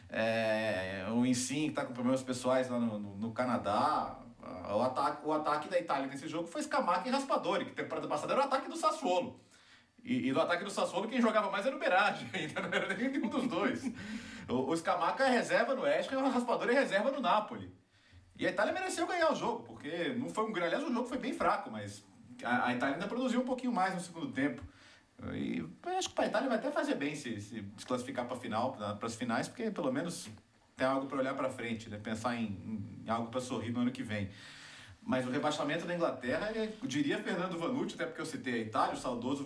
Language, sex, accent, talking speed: Portuguese, male, Brazilian, 230 wpm